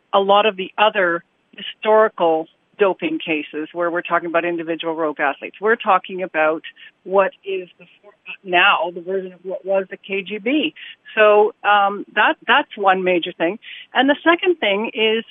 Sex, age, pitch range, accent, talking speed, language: female, 50-69, 185-235 Hz, American, 160 wpm, English